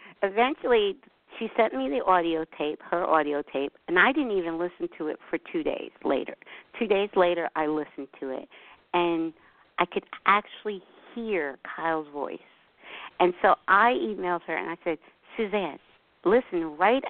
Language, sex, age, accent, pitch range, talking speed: English, female, 50-69, American, 160-215 Hz, 160 wpm